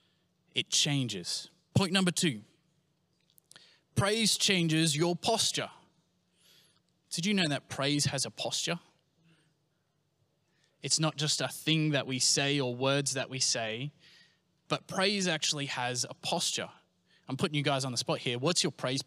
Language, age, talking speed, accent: English, 20-39, 150 wpm, Australian